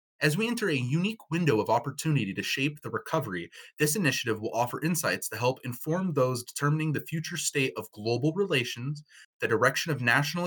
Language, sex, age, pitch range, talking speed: English, male, 20-39, 115-150 Hz, 185 wpm